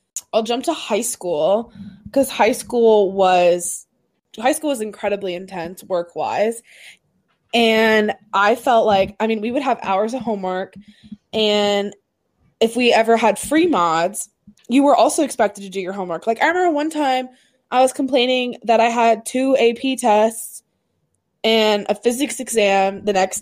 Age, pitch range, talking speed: 20-39, 210-285 Hz, 160 wpm